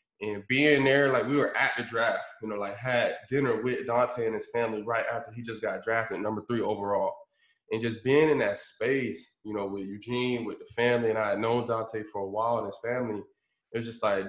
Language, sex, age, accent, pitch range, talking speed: English, male, 20-39, American, 110-125 Hz, 235 wpm